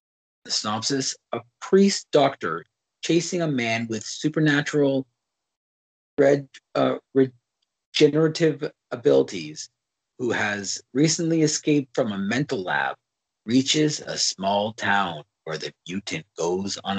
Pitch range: 120-170 Hz